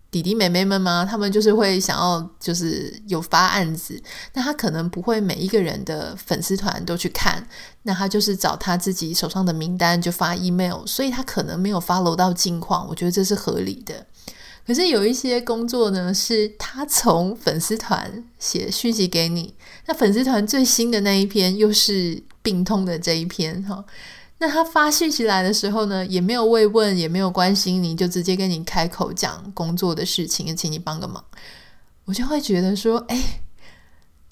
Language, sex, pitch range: Chinese, female, 180-220 Hz